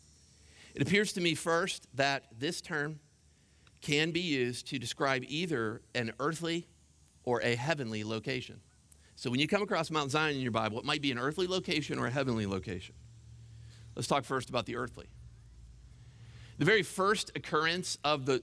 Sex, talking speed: male, 170 wpm